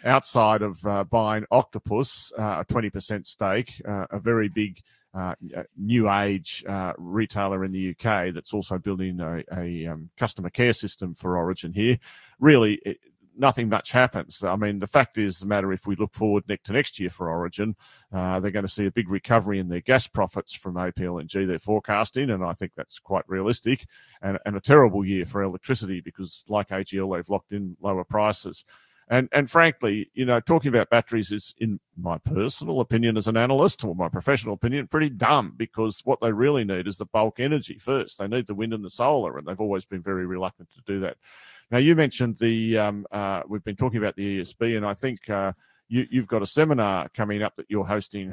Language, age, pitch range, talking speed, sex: English, 40-59, 95-115 Hz, 205 wpm, male